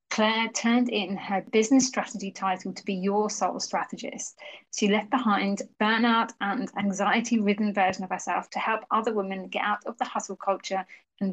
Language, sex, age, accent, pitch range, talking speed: English, female, 30-49, British, 195-235 Hz, 170 wpm